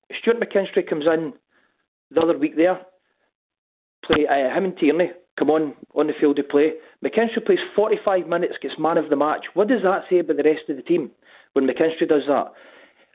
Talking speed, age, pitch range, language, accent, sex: 190 wpm, 40-59, 150-195 Hz, English, British, male